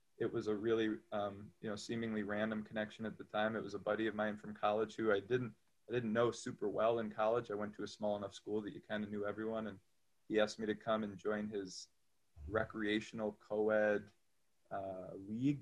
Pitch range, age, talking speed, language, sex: 105-115 Hz, 20-39, 220 wpm, English, male